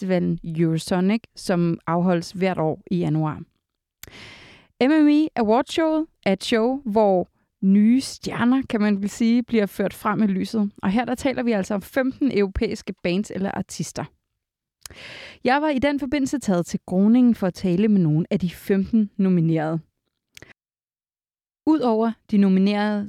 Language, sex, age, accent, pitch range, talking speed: Danish, female, 30-49, native, 185-245 Hz, 145 wpm